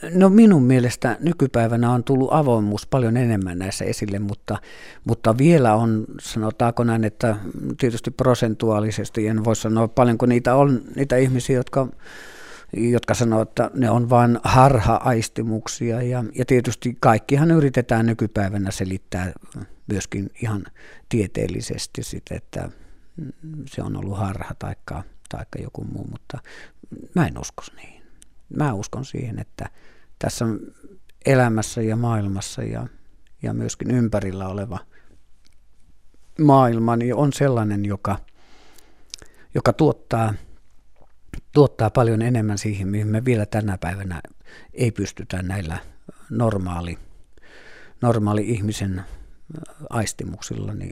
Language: Finnish